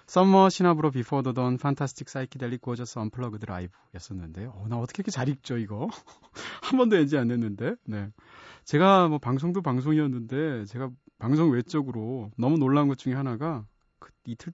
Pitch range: 115-155 Hz